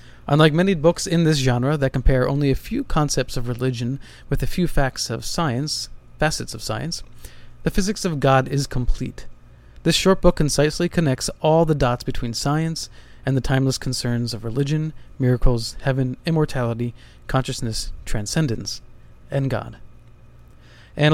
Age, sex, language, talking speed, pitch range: 30-49, male, English, 150 wpm, 120-155 Hz